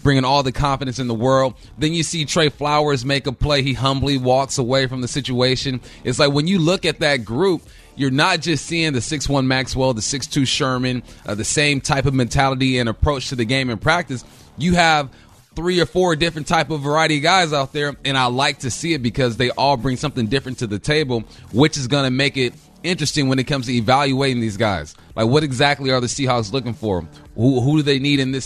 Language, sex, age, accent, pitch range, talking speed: English, male, 30-49, American, 120-145 Hz, 230 wpm